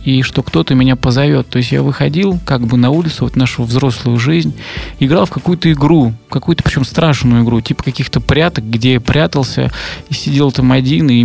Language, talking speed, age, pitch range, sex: Russian, 190 wpm, 20-39, 120-140 Hz, male